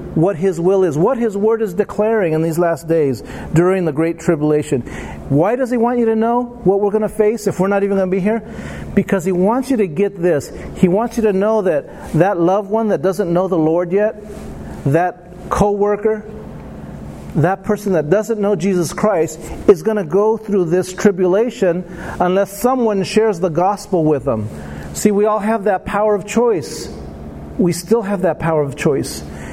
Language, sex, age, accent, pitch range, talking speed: English, male, 40-59, American, 165-210 Hz, 190 wpm